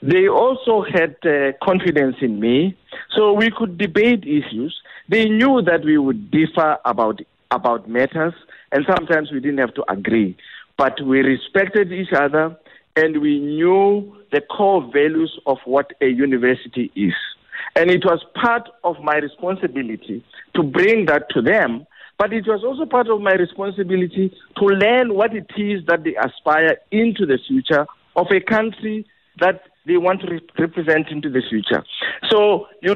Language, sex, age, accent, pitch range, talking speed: English, male, 50-69, South African, 140-200 Hz, 160 wpm